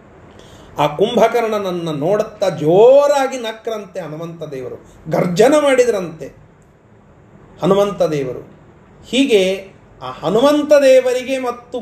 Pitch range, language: 180-250 Hz, Kannada